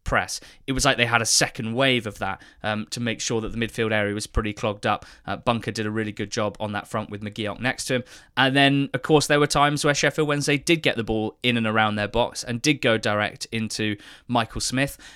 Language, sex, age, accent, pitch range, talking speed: English, male, 20-39, British, 110-140 Hz, 255 wpm